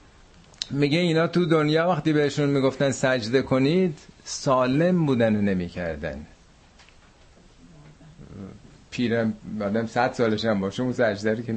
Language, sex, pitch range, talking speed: Persian, male, 100-140 Hz, 125 wpm